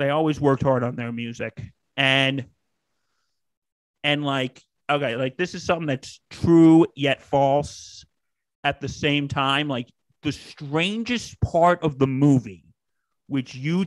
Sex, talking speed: male, 140 wpm